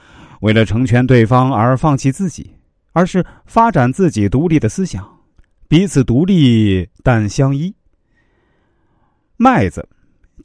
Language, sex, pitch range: Chinese, male, 100-145 Hz